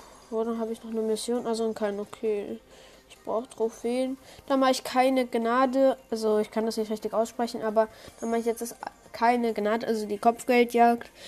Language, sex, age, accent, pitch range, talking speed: German, female, 20-39, German, 225-265 Hz, 195 wpm